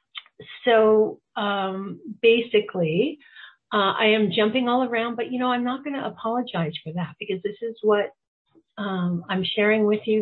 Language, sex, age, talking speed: English, female, 50-69, 165 wpm